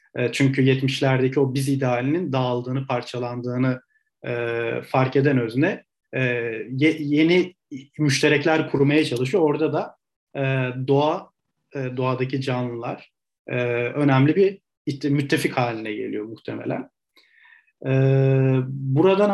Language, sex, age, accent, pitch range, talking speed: Turkish, male, 40-59, native, 125-145 Hz, 100 wpm